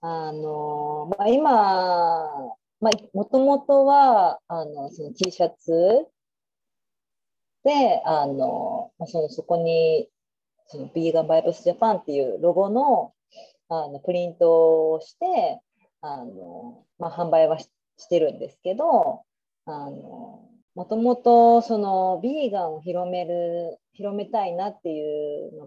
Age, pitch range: 40-59, 155-230 Hz